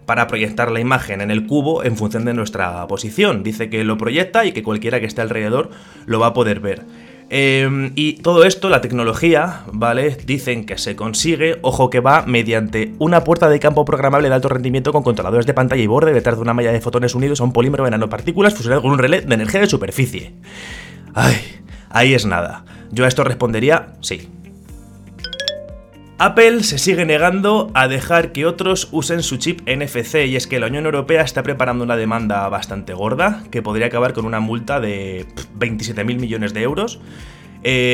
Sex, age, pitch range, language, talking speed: male, 20-39, 110-145 Hz, Spanish, 190 wpm